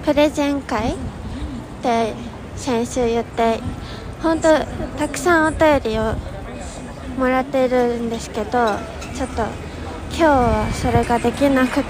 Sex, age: female, 20-39